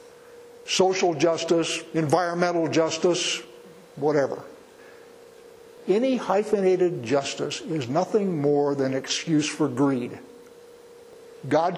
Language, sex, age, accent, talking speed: English, male, 60-79, American, 75 wpm